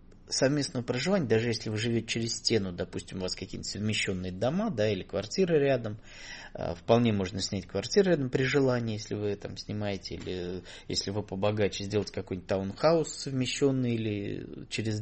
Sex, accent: male, native